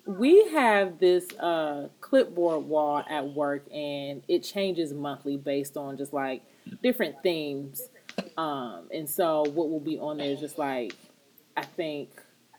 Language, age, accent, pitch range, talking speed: English, 30-49, American, 145-185 Hz, 150 wpm